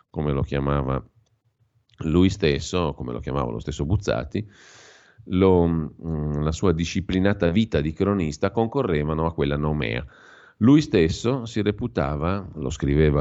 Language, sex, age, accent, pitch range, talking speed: Italian, male, 40-59, native, 75-100 Hz, 125 wpm